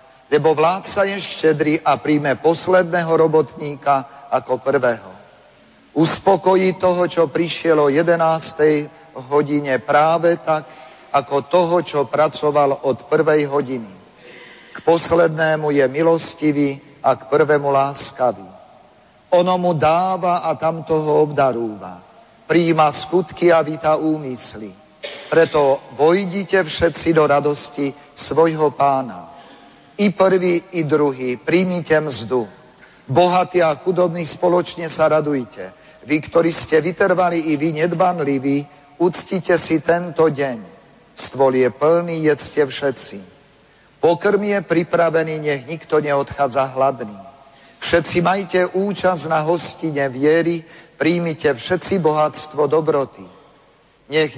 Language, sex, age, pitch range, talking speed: Slovak, male, 50-69, 140-170 Hz, 110 wpm